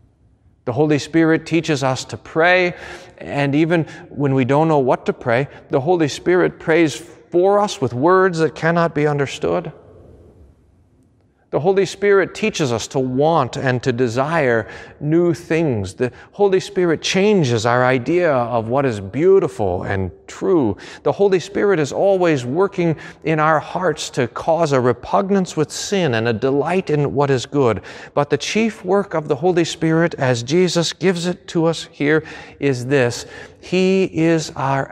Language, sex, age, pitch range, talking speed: English, male, 40-59, 110-165 Hz, 160 wpm